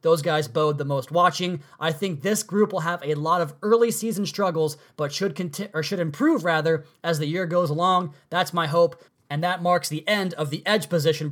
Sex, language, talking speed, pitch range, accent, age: male, English, 225 wpm, 155-195 Hz, American, 20-39